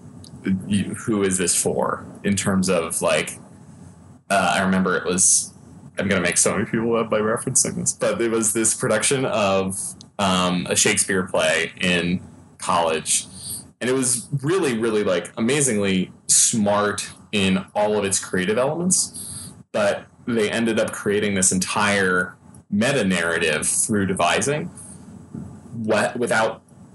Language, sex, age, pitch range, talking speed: English, male, 20-39, 95-110 Hz, 135 wpm